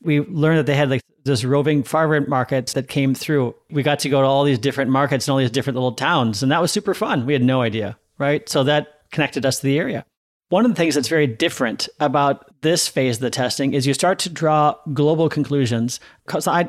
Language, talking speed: English, 240 wpm